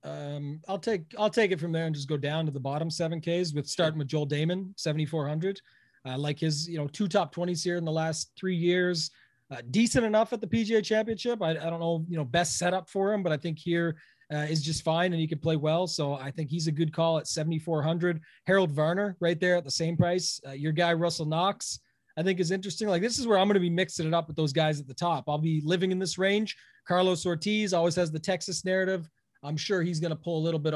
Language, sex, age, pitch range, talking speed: English, male, 30-49, 155-190 Hz, 260 wpm